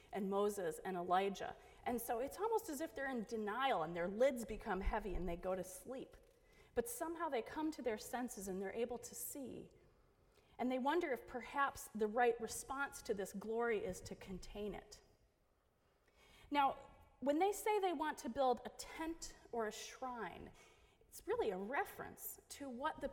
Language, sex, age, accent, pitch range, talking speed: English, female, 30-49, American, 215-280 Hz, 180 wpm